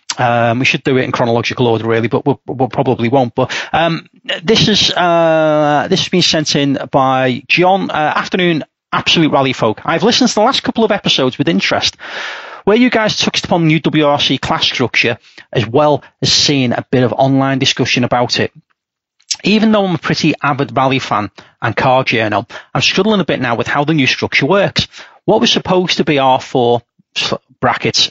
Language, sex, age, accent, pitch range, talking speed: English, male, 30-49, British, 120-160 Hz, 195 wpm